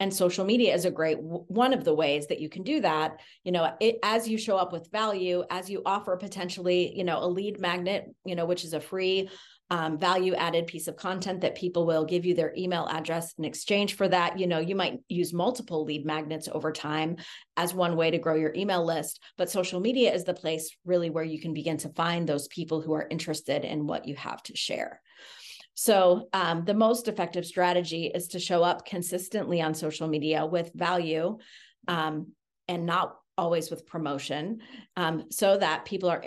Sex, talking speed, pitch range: female, 205 wpm, 160-185 Hz